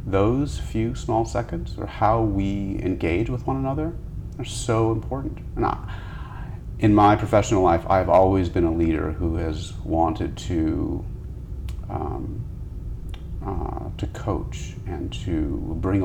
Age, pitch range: 40-59, 85-105 Hz